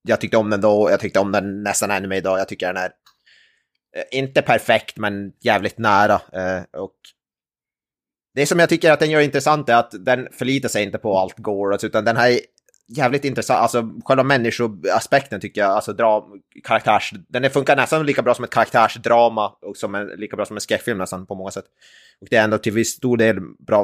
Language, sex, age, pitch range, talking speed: Swedish, male, 20-39, 95-120 Hz, 205 wpm